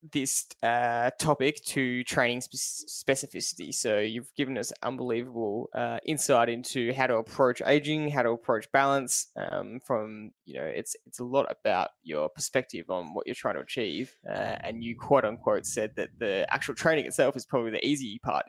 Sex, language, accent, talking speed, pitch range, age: male, English, Australian, 180 wpm, 120-145 Hz, 10-29